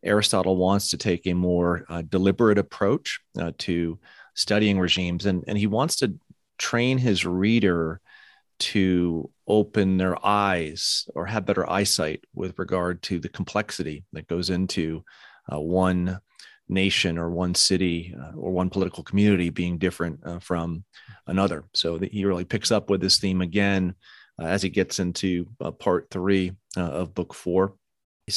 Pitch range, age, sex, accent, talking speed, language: 90-100 Hz, 30-49, male, American, 160 wpm, English